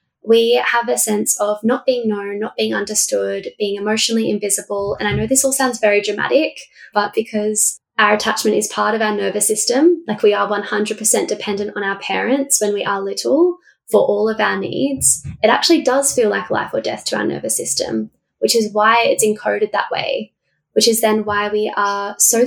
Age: 10-29